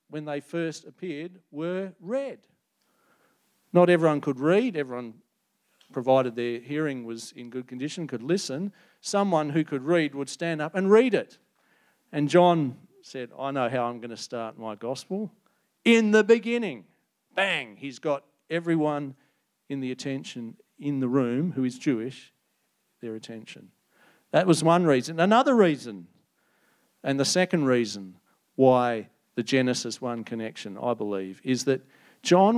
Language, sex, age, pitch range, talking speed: English, male, 50-69, 125-175 Hz, 145 wpm